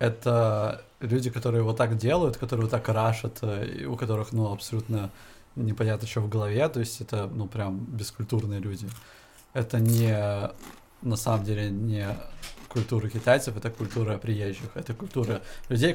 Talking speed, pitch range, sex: 150 wpm, 110-120 Hz, male